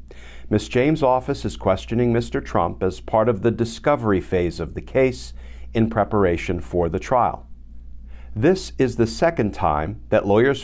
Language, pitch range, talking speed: English, 85-125 Hz, 160 wpm